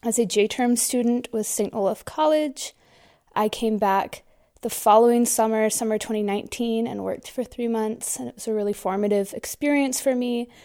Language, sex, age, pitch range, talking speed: English, female, 20-39, 200-240 Hz, 170 wpm